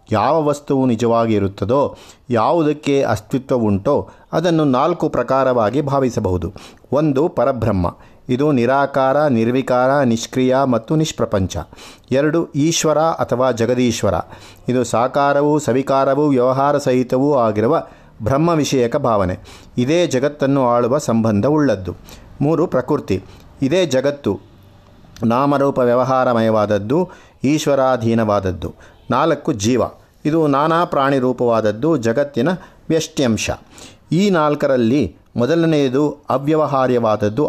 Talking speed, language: 85 wpm, Kannada